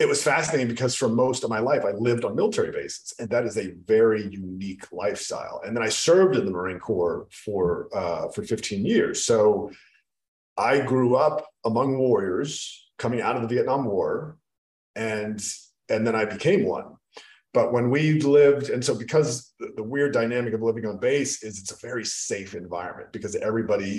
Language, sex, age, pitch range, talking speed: English, male, 40-59, 105-150 Hz, 190 wpm